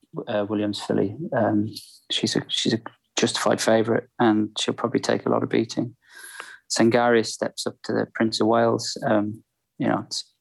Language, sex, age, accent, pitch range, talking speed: English, male, 20-39, British, 115-130 Hz, 175 wpm